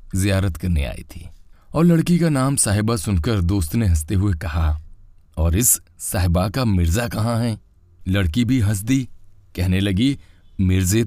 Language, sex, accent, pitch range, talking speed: Hindi, male, native, 85-120 Hz, 155 wpm